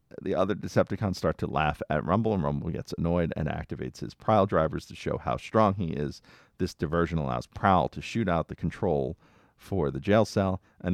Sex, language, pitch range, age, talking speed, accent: male, English, 75-105 Hz, 40-59, 205 wpm, American